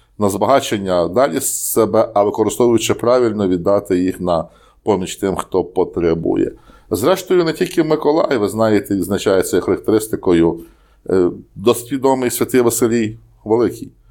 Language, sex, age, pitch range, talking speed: Ukrainian, male, 50-69, 100-130 Hz, 115 wpm